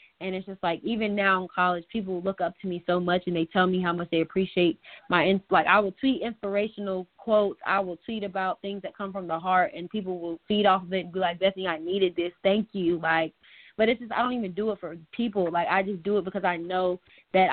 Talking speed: 260 wpm